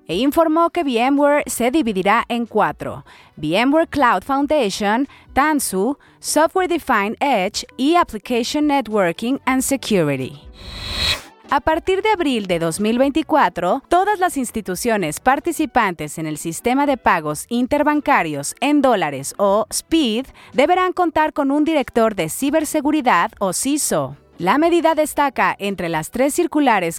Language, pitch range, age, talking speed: Spanish, 195-295 Hz, 30-49, 125 wpm